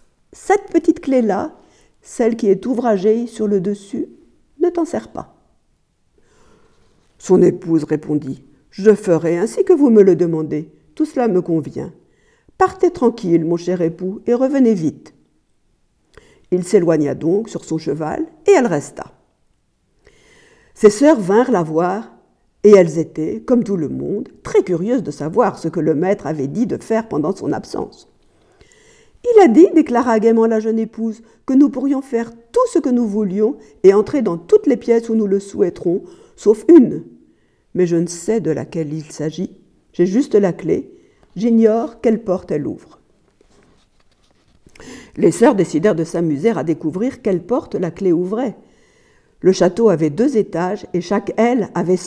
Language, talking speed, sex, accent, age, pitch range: French, 160 wpm, female, French, 50-69, 175-260 Hz